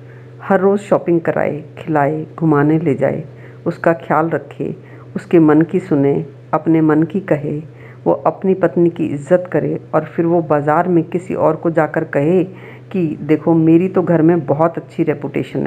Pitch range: 135-185 Hz